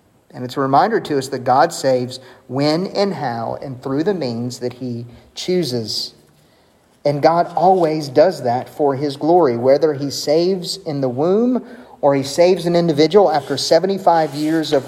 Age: 40-59